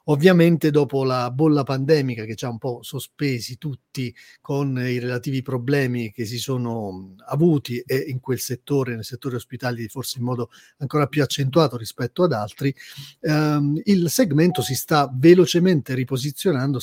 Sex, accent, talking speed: male, native, 155 wpm